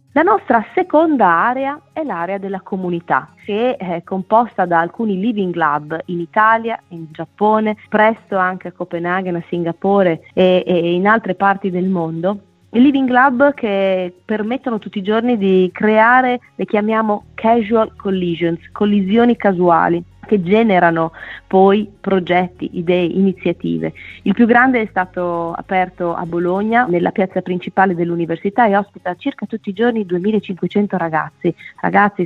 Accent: native